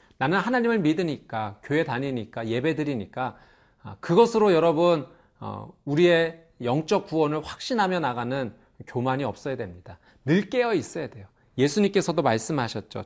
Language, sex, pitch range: Korean, male, 115-170 Hz